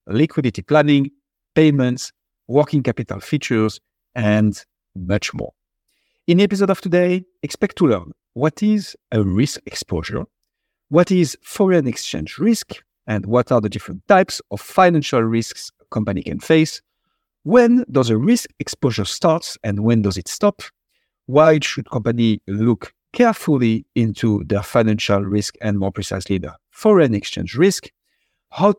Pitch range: 105-155 Hz